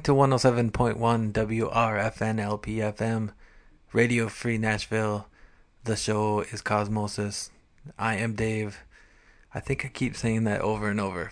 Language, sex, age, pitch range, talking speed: English, male, 20-39, 105-125 Hz, 140 wpm